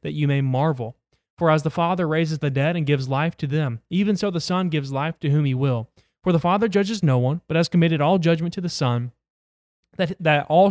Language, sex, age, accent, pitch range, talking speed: English, male, 20-39, American, 135-165 Hz, 240 wpm